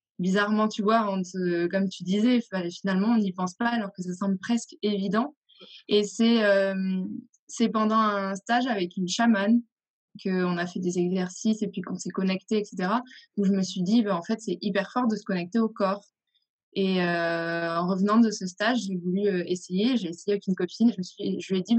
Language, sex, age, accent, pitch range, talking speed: French, female, 20-39, French, 190-230 Hz, 215 wpm